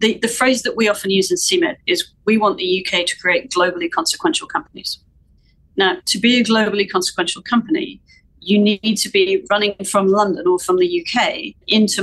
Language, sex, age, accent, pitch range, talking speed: English, female, 40-59, British, 180-235 Hz, 190 wpm